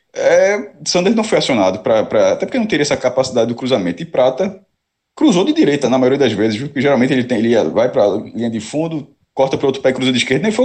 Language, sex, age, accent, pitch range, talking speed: Portuguese, male, 20-39, Brazilian, 120-165 Hz, 260 wpm